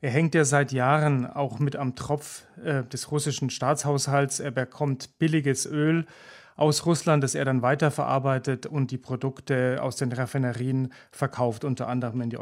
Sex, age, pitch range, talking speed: male, 40-59, 130-150 Hz, 165 wpm